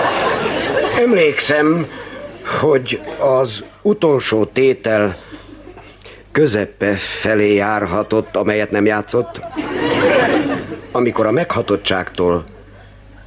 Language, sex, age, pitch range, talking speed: Hungarian, male, 50-69, 95-120 Hz, 65 wpm